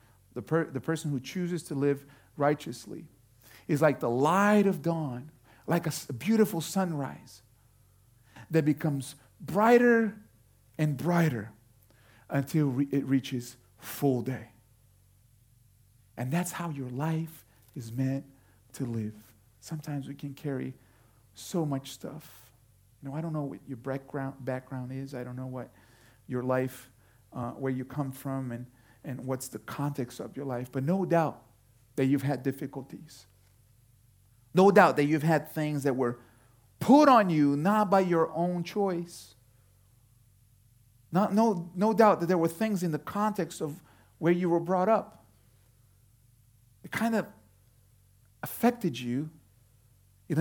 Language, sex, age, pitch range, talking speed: English, male, 50-69, 115-160 Hz, 145 wpm